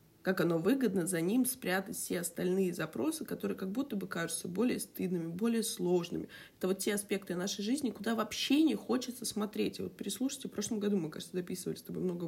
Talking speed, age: 200 wpm, 20-39